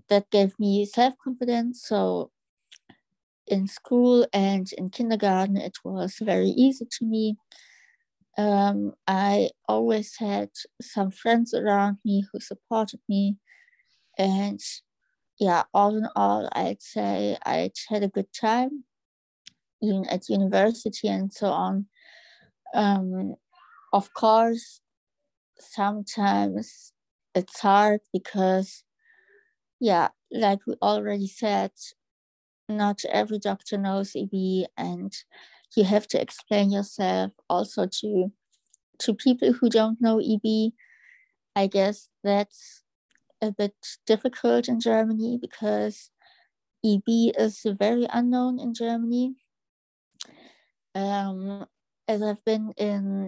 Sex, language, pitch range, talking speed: female, English, 195-235 Hz, 105 wpm